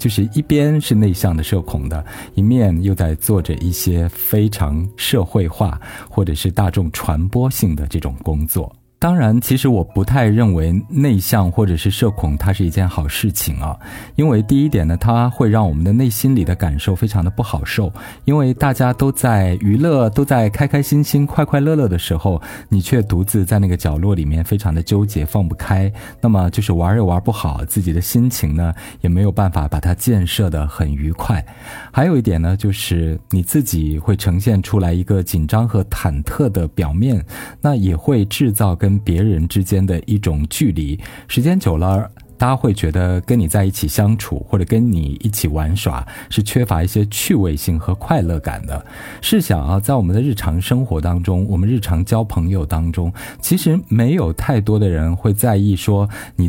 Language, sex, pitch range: Chinese, male, 85-115 Hz